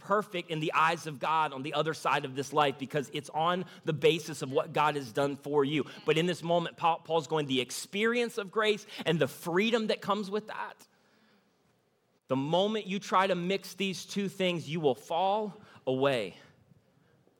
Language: English